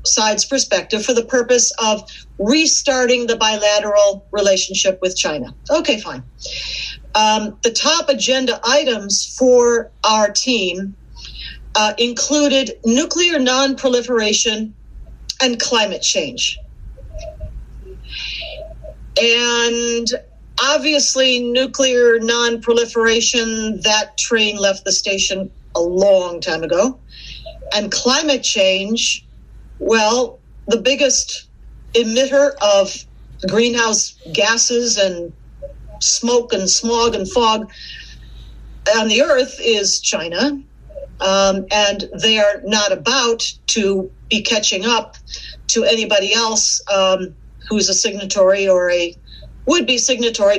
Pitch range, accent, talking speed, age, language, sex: 200-255 Hz, American, 100 wpm, 40-59, English, female